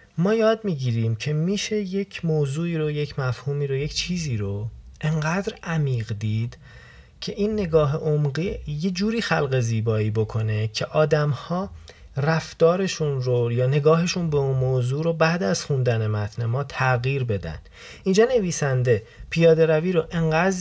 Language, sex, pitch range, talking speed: Persian, male, 110-155 Hz, 145 wpm